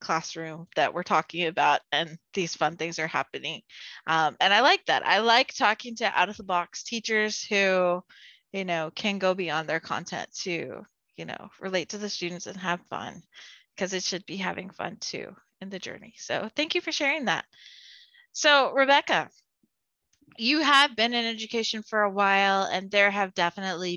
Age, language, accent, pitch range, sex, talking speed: 20-39, English, American, 175-225 Hz, female, 185 wpm